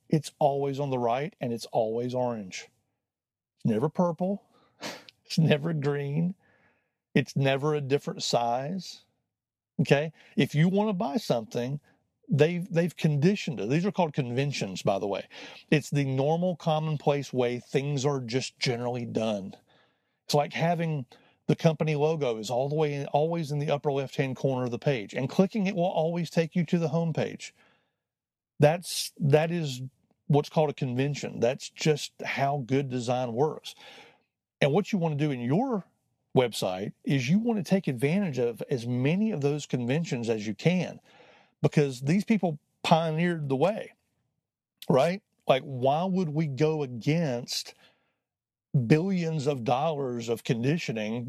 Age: 40-59